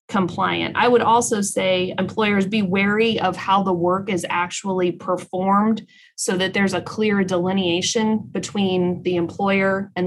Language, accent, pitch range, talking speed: English, American, 185-220 Hz, 150 wpm